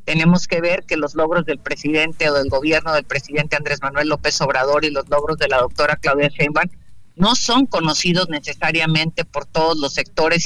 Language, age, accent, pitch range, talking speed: Spanish, 50-69, Mexican, 150-180 Hz, 190 wpm